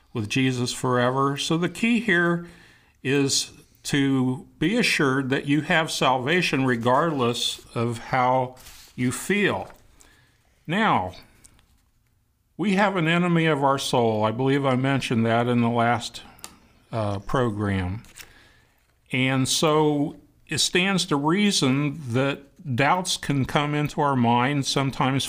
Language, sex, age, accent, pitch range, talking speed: English, male, 50-69, American, 120-150 Hz, 125 wpm